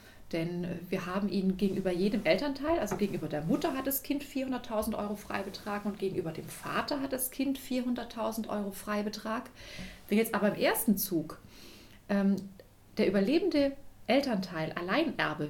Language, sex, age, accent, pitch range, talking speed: German, female, 30-49, German, 185-220 Hz, 145 wpm